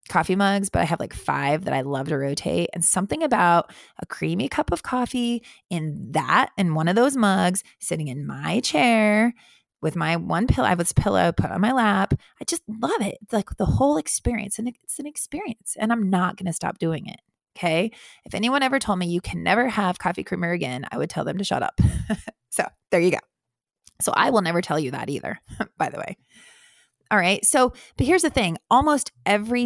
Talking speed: 220 wpm